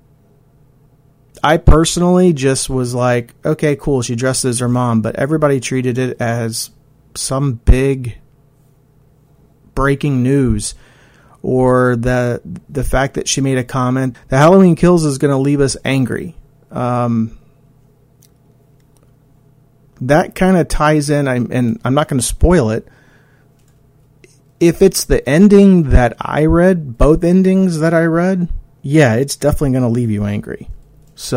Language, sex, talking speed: English, male, 140 wpm